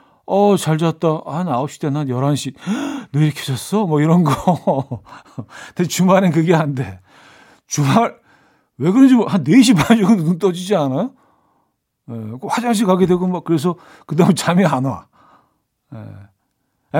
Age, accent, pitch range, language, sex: 40-59, native, 130-180 Hz, Korean, male